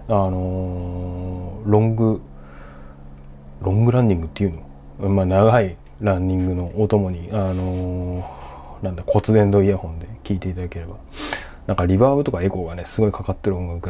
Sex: male